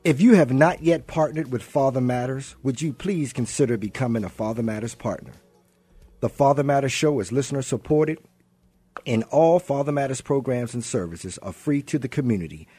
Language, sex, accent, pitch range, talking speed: English, male, American, 110-140 Hz, 175 wpm